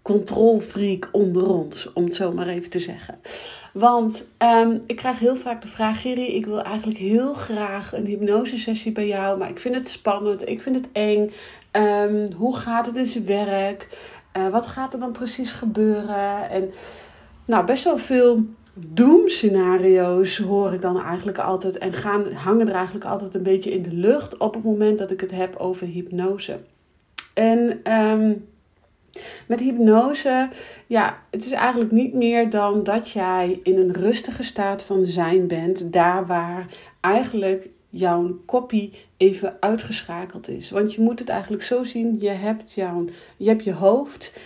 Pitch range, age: 190-230 Hz, 40-59